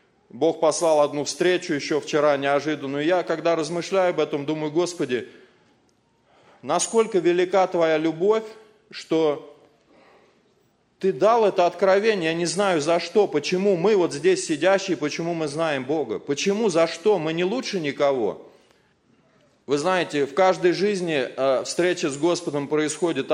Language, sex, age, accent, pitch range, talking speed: Russian, male, 30-49, native, 160-195 Hz, 135 wpm